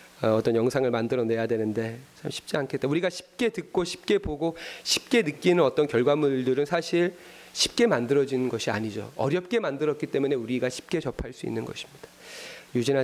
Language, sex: Korean, male